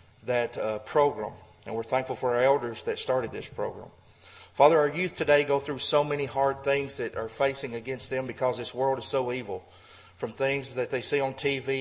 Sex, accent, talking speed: male, American, 210 wpm